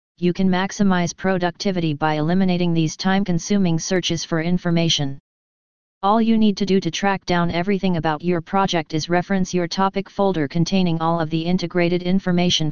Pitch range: 165-195 Hz